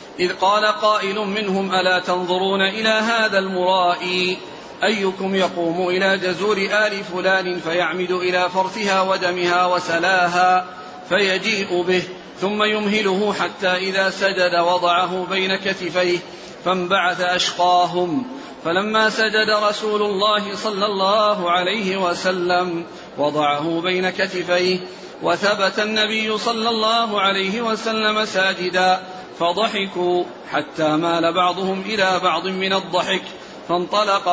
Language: Arabic